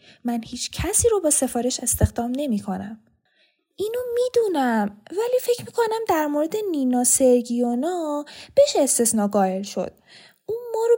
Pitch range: 230-345 Hz